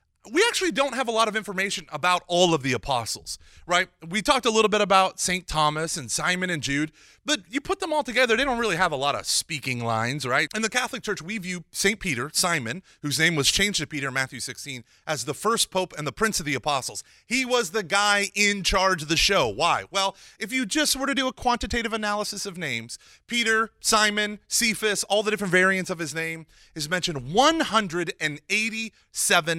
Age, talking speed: 30-49, 215 wpm